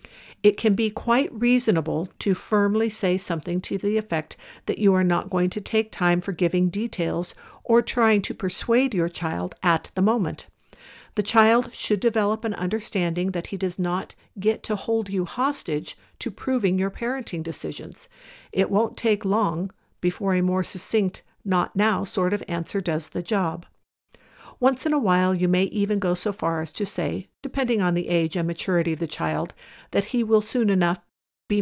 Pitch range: 175-215 Hz